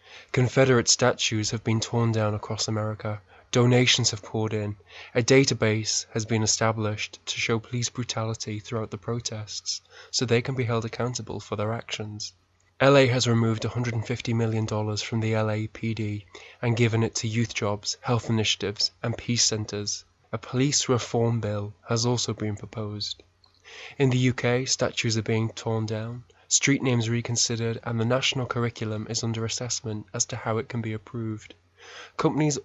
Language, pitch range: English, 110-120 Hz